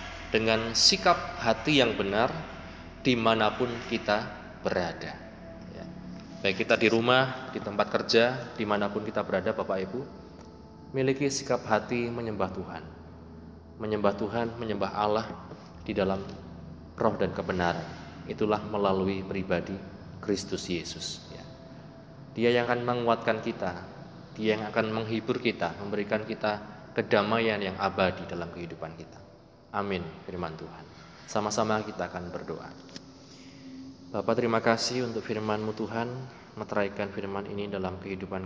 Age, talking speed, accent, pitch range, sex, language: 20-39, 120 wpm, native, 95-115 Hz, male, Indonesian